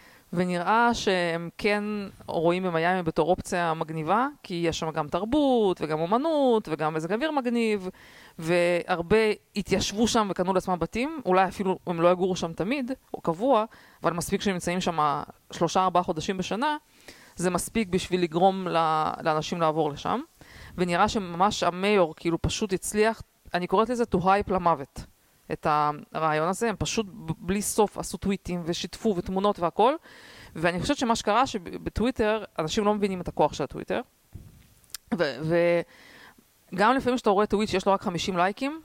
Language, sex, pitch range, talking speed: Hebrew, female, 170-215 Hz, 150 wpm